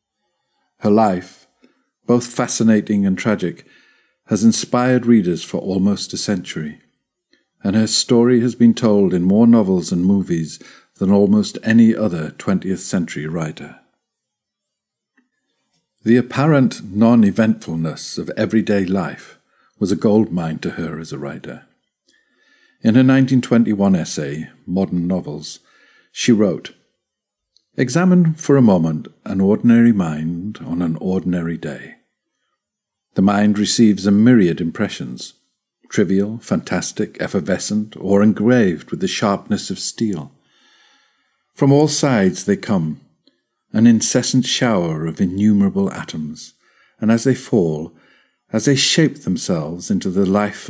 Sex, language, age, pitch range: male, Italian, 50-69, 95-120 Hz